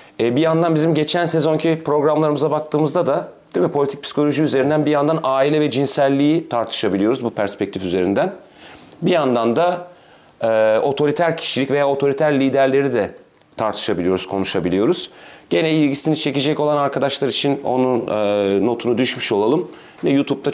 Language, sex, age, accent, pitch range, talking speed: Turkish, male, 40-59, native, 115-150 Hz, 135 wpm